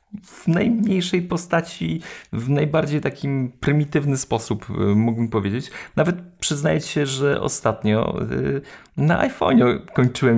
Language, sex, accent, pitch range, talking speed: Polish, male, native, 100-140 Hz, 105 wpm